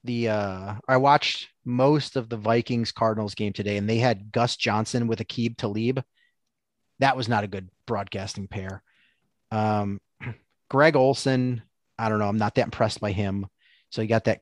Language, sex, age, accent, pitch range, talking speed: English, male, 30-49, American, 110-130 Hz, 175 wpm